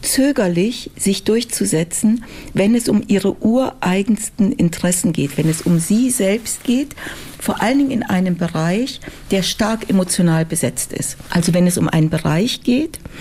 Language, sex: German, female